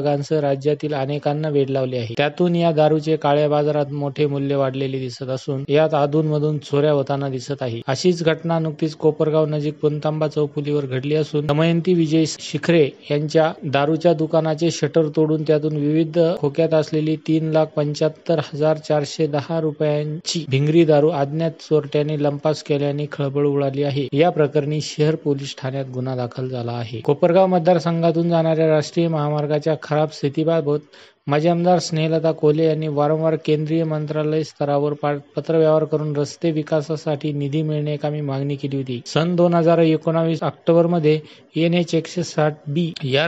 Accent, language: native, Marathi